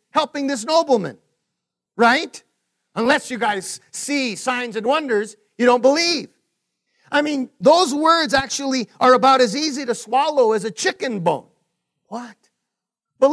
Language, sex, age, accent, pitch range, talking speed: English, male, 50-69, American, 245-295 Hz, 140 wpm